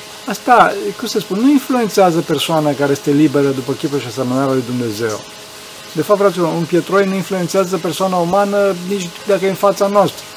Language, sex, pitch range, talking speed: Romanian, male, 145-190 Hz, 180 wpm